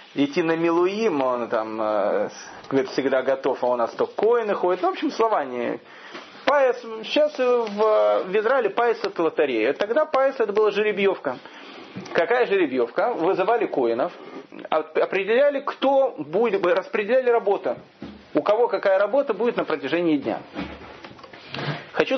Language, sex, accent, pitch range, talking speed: Russian, male, native, 170-265 Hz, 140 wpm